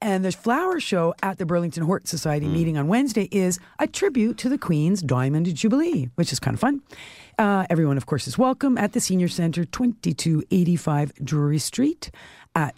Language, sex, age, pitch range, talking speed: English, female, 50-69, 150-220 Hz, 185 wpm